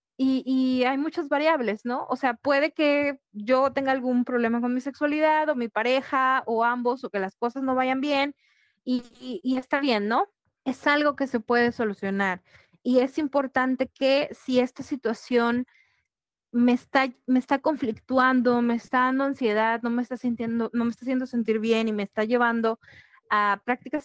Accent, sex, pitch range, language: Mexican, female, 220-265 Hz, Spanish